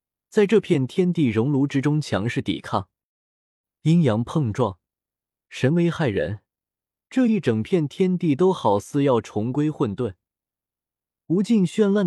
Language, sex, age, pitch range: Chinese, male, 20-39, 110-170 Hz